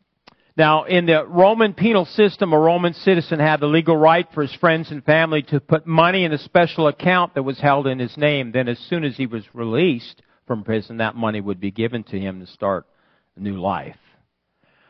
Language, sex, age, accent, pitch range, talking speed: English, male, 50-69, American, 125-185 Hz, 210 wpm